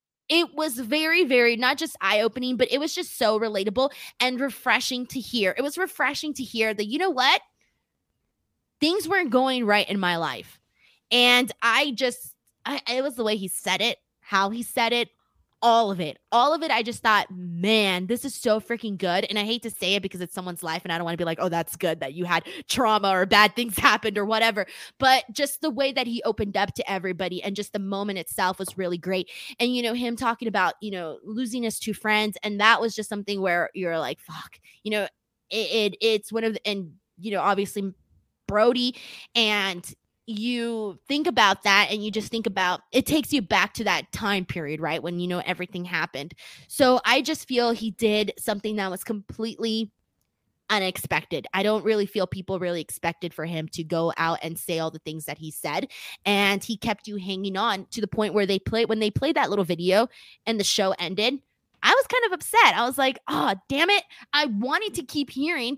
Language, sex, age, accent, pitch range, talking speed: English, female, 20-39, American, 190-245 Hz, 215 wpm